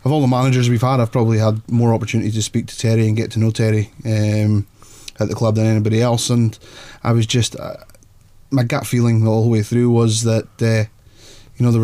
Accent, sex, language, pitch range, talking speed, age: British, male, English, 110-115 Hz, 230 wpm, 20-39